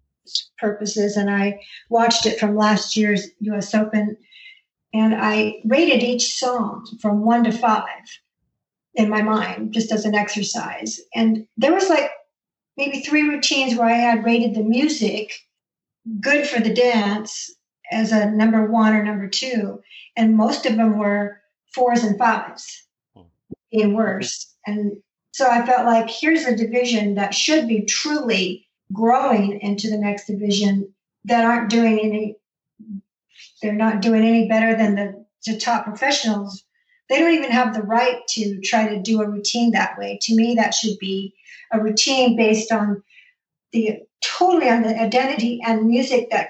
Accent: American